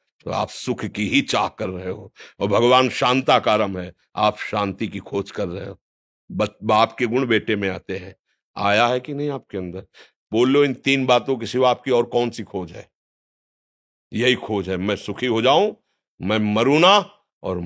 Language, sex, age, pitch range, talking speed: Hindi, male, 60-79, 100-130 Hz, 195 wpm